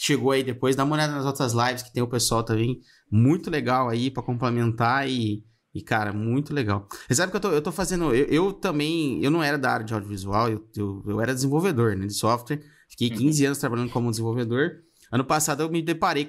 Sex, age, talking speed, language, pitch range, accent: male, 20-39, 225 wpm, Portuguese, 120-155 Hz, Brazilian